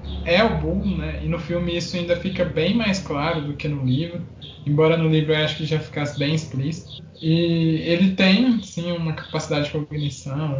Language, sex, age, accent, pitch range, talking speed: Portuguese, male, 20-39, Brazilian, 145-175 Hz, 200 wpm